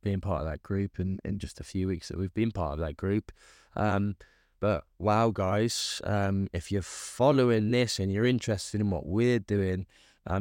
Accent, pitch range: British, 90-105 Hz